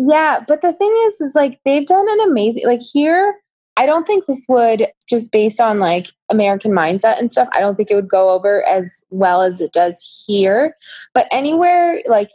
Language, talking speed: English, 205 wpm